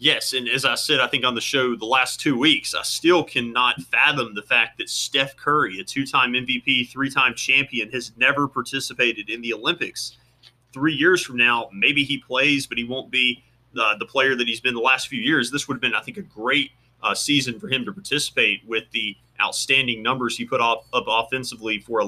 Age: 30-49